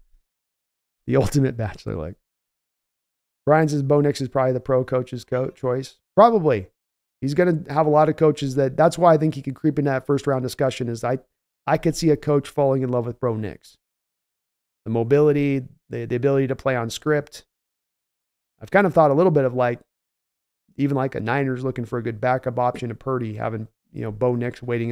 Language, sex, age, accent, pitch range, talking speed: English, male, 40-59, American, 125-150 Hz, 205 wpm